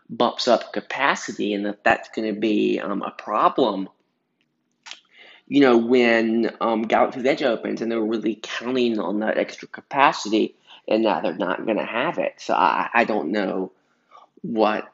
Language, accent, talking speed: English, American, 160 wpm